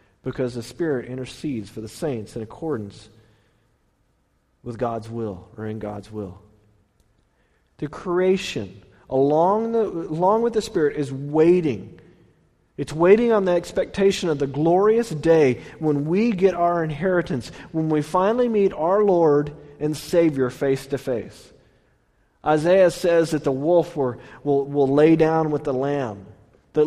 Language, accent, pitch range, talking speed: English, American, 130-170 Hz, 145 wpm